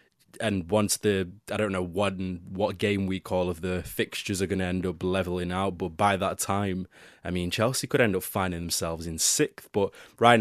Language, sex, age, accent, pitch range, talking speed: English, male, 20-39, British, 90-105 Hz, 210 wpm